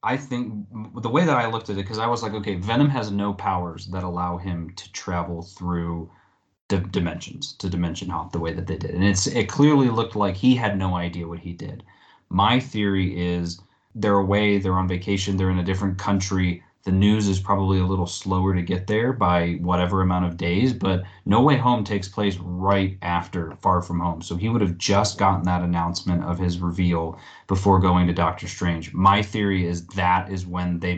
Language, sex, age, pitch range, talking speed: English, male, 30-49, 90-105 Hz, 210 wpm